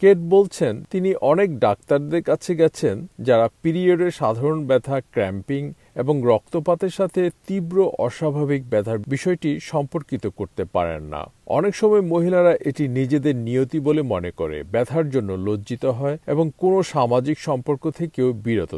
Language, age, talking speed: Bengali, 50-69, 95 wpm